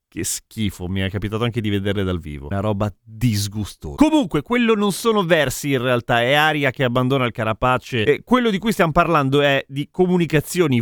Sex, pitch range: male, 125-180 Hz